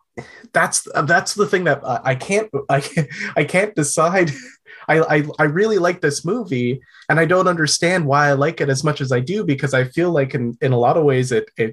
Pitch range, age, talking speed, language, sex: 120-150 Hz, 20-39, 225 wpm, English, male